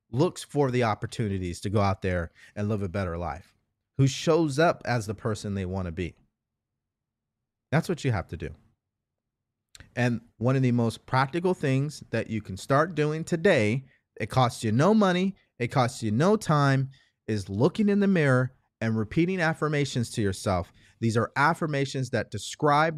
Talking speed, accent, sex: 175 wpm, American, male